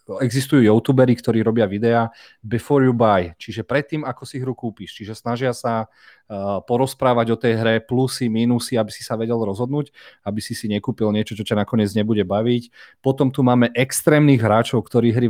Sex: male